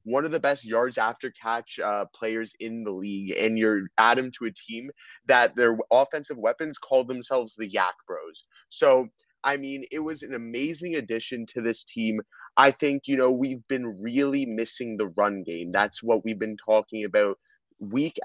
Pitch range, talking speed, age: 110-135 Hz, 185 wpm, 20-39